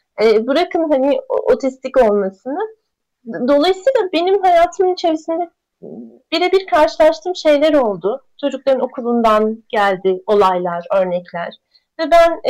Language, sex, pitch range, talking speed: Turkish, female, 215-315 Hz, 90 wpm